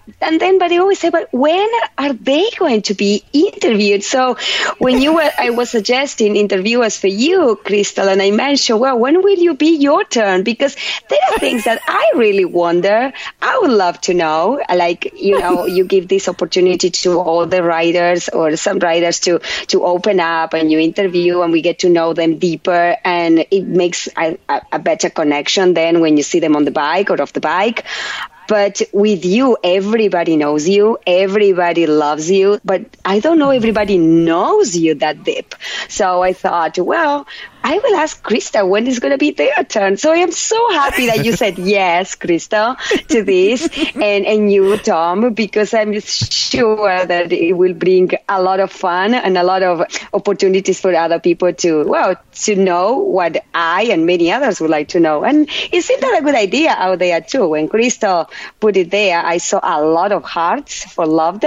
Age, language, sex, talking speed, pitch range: 30-49, English, female, 195 wpm, 175-255 Hz